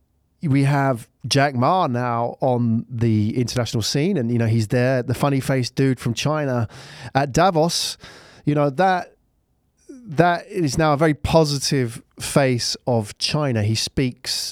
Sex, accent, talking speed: male, British, 150 wpm